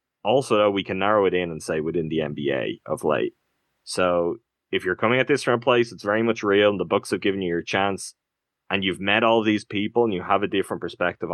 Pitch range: 90-110 Hz